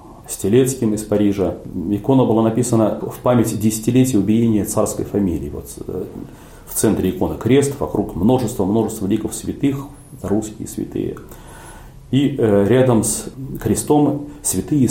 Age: 40-59